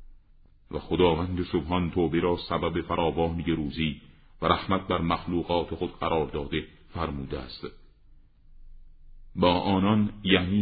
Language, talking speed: Persian, 115 wpm